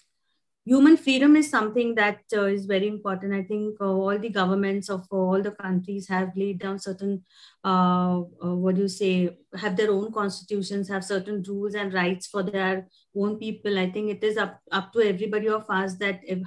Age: 30-49